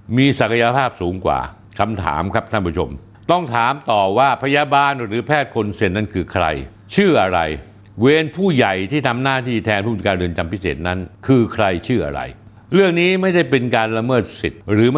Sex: male